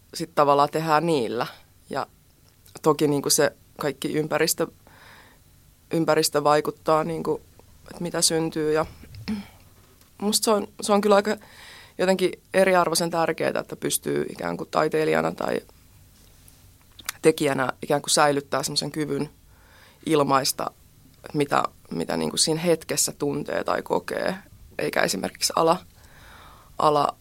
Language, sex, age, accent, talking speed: Finnish, female, 20-39, native, 110 wpm